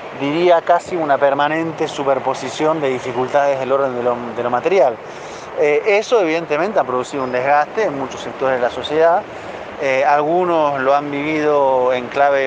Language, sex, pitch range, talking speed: Spanish, male, 125-155 Hz, 160 wpm